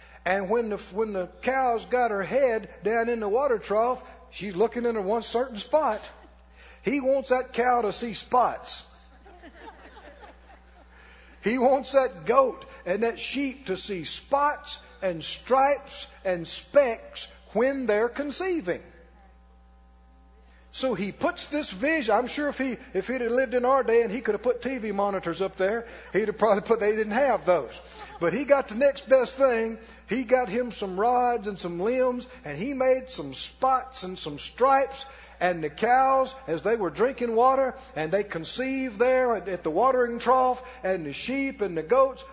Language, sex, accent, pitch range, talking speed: English, male, American, 190-265 Hz, 175 wpm